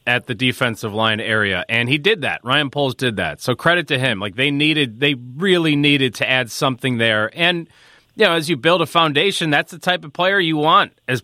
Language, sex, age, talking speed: English, male, 30-49, 230 wpm